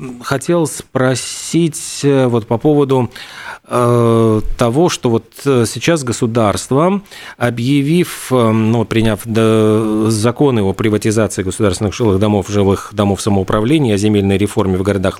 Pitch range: 110-135 Hz